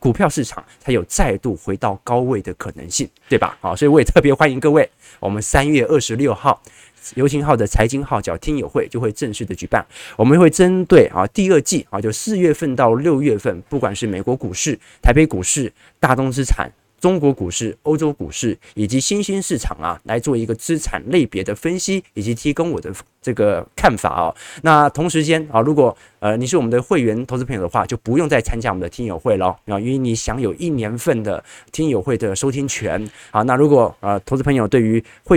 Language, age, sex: Chinese, 20-39, male